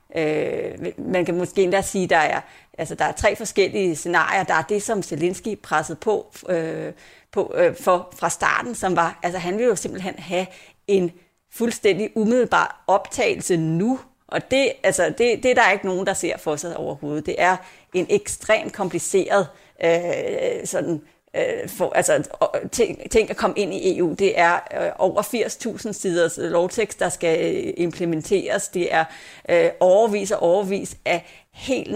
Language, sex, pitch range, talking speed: Danish, female, 175-225 Hz, 165 wpm